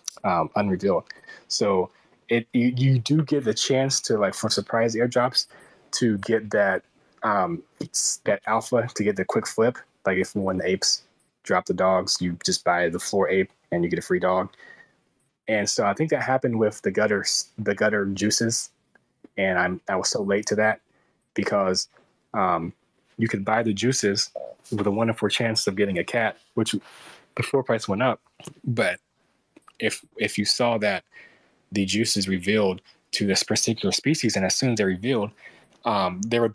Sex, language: male, English